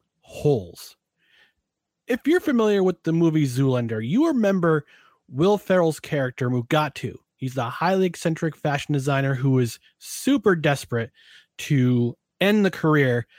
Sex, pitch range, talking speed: male, 140-200 Hz, 125 wpm